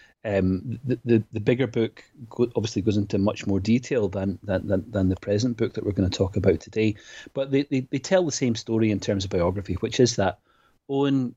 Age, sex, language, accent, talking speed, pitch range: 30-49, male, English, British, 220 wpm, 95-115 Hz